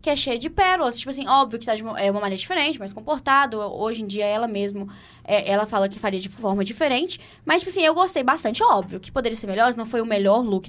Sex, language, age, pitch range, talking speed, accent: female, Portuguese, 10-29, 205-305 Hz, 270 wpm, Brazilian